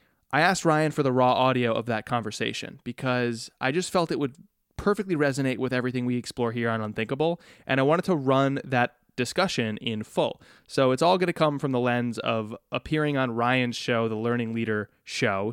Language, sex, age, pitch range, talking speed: English, male, 20-39, 120-145 Hz, 200 wpm